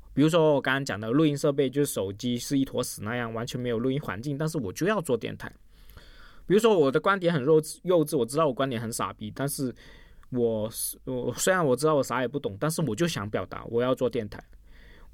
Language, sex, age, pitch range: Chinese, male, 20-39, 120-160 Hz